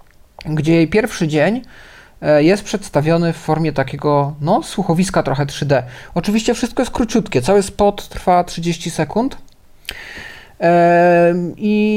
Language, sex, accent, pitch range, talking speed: Polish, male, native, 140-195 Hz, 110 wpm